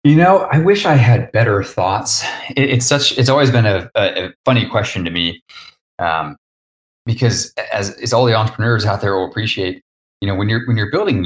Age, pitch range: 30-49, 85-120 Hz